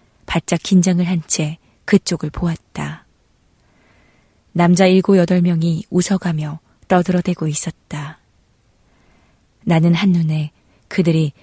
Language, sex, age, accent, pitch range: Korean, female, 20-39, native, 155-185 Hz